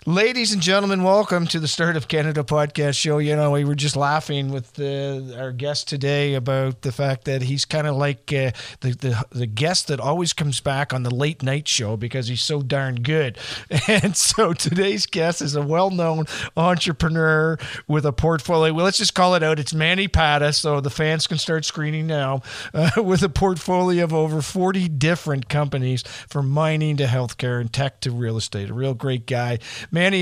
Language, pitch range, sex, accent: English, 130-165 Hz, male, American